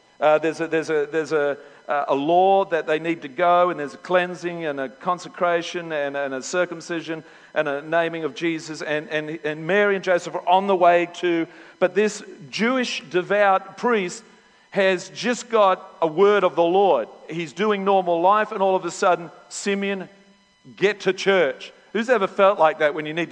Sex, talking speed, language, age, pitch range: male, 195 wpm, English, 50-69, 160-205 Hz